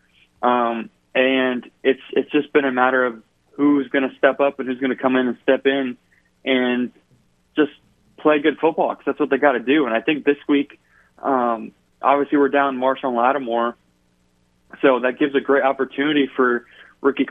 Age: 20-39